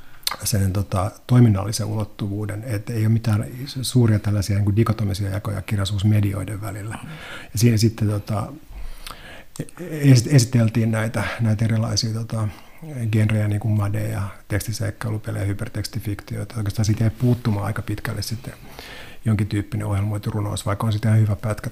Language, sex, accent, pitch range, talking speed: Finnish, male, native, 105-120 Hz, 130 wpm